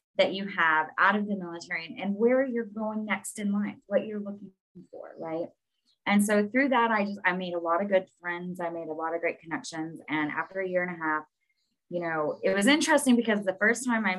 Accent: American